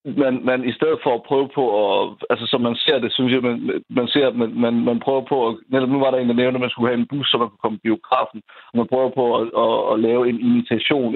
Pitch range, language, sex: 115-130 Hz, Danish, male